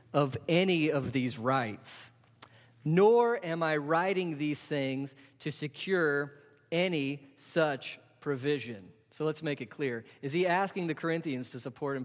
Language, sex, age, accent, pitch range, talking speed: English, male, 40-59, American, 120-150 Hz, 145 wpm